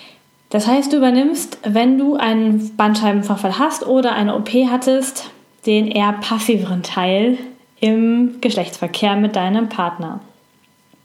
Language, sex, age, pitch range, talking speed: German, female, 10-29, 205-250 Hz, 120 wpm